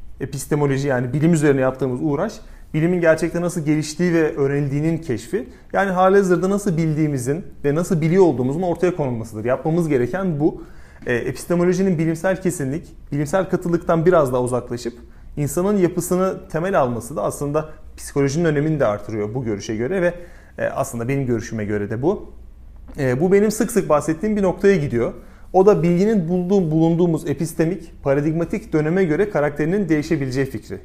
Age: 30-49